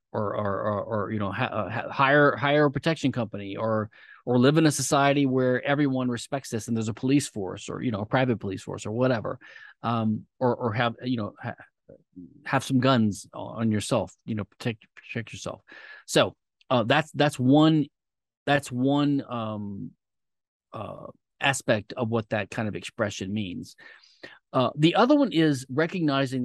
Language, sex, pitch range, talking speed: English, male, 110-145 Hz, 175 wpm